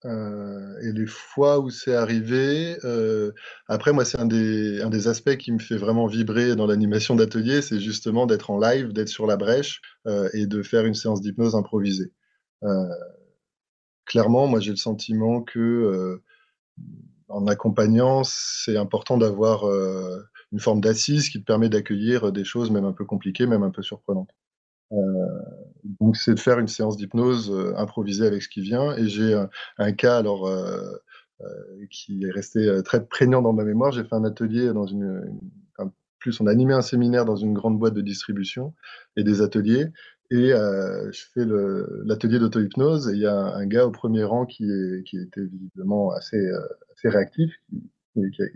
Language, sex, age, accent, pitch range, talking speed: French, male, 20-39, French, 105-120 Hz, 190 wpm